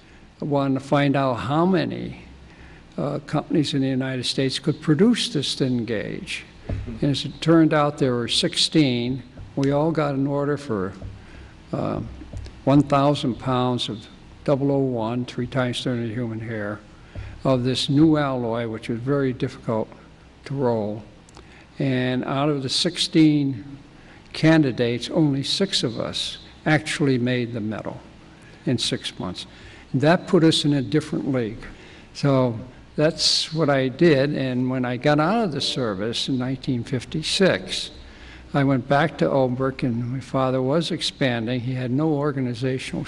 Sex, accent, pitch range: male, American, 125-150 Hz